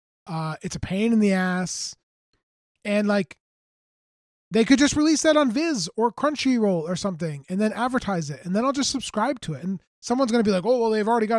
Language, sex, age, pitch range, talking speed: English, male, 20-39, 180-230 Hz, 215 wpm